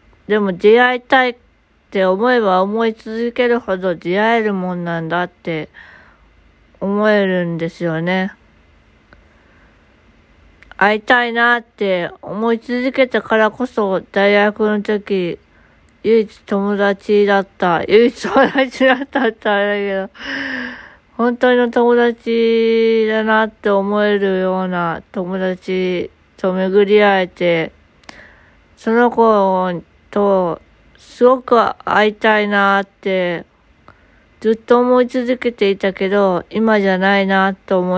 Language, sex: Japanese, female